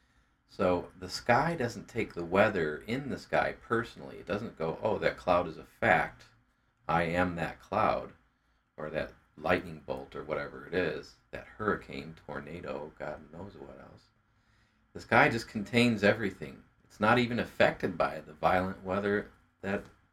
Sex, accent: male, American